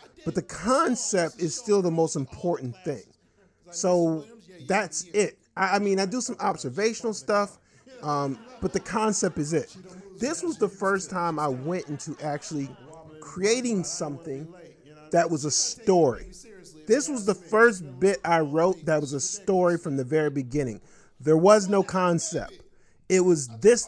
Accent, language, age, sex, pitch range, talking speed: American, English, 40-59, male, 155-200 Hz, 155 wpm